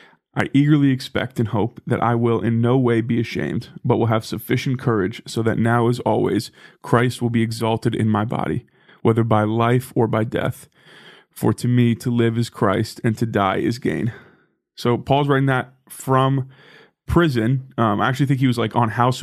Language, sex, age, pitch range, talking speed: English, male, 20-39, 115-130 Hz, 195 wpm